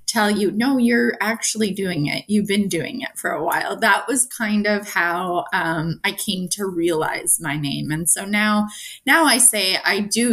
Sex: female